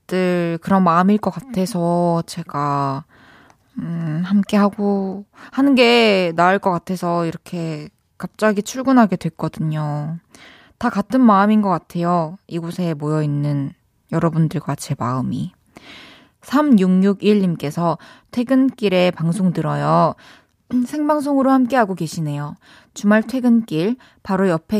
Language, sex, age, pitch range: Korean, female, 20-39, 165-210 Hz